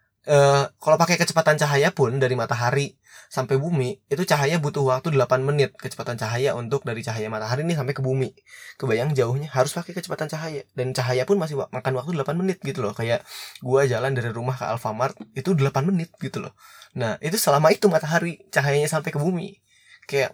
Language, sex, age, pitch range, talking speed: Indonesian, male, 20-39, 125-165 Hz, 190 wpm